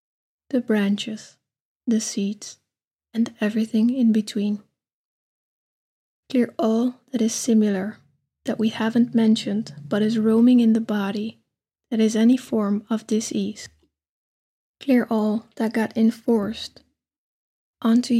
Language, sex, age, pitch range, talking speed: English, female, 20-39, 215-235 Hz, 115 wpm